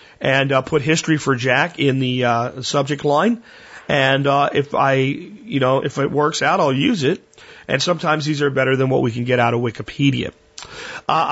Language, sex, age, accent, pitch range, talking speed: English, male, 40-59, American, 125-150 Hz, 200 wpm